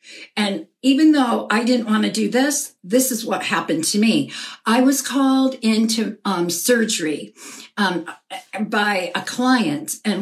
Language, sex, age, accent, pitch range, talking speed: English, female, 60-79, American, 190-240 Hz, 155 wpm